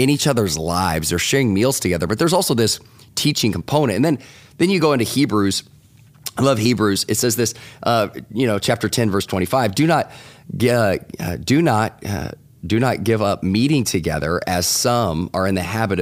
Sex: male